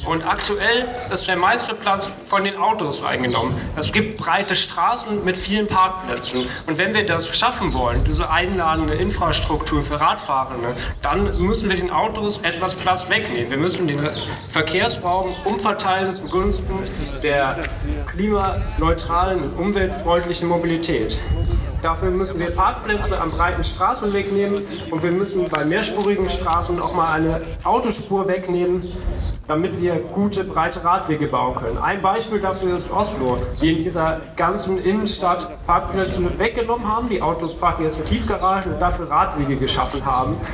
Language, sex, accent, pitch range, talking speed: German, male, German, 160-195 Hz, 145 wpm